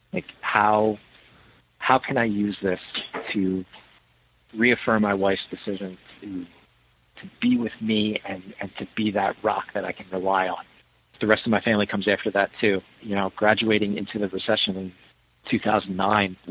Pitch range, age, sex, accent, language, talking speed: 95-105 Hz, 40-59, male, American, English, 165 wpm